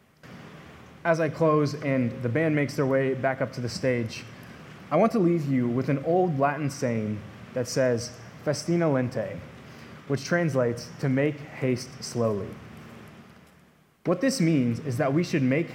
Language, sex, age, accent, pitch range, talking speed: English, male, 20-39, American, 125-160 Hz, 160 wpm